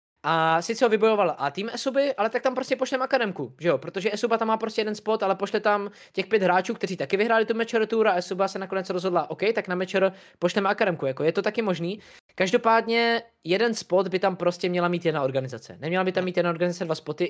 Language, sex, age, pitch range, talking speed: Czech, male, 20-39, 155-210 Hz, 230 wpm